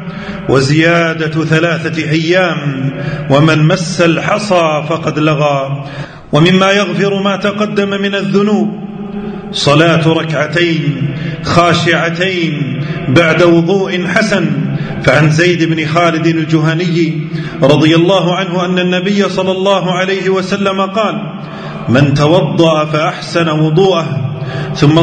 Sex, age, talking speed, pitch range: male, 40-59, 95 wpm, 155-185 Hz